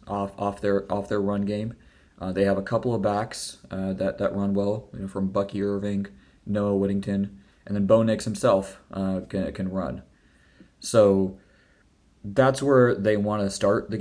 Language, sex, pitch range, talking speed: English, male, 95-110 Hz, 185 wpm